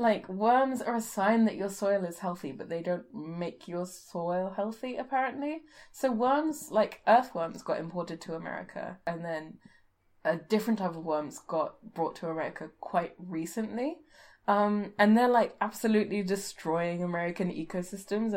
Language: English